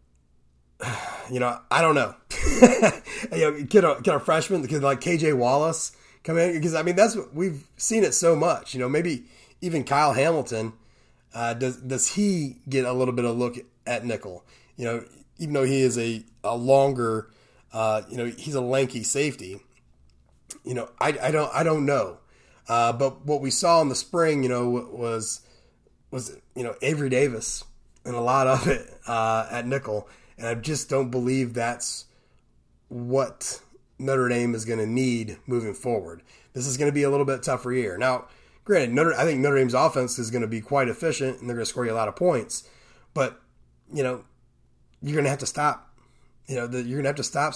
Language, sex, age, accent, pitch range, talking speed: English, male, 30-49, American, 115-145 Hz, 205 wpm